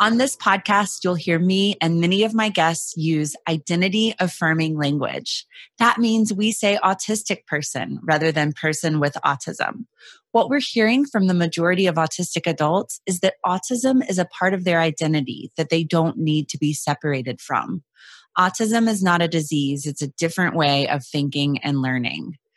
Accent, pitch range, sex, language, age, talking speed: American, 165-245 Hz, female, English, 30-49, 175 wpm